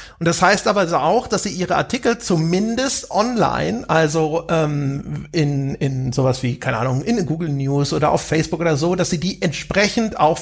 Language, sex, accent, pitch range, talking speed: German, male, German, 150-185 Hz, 185 wpm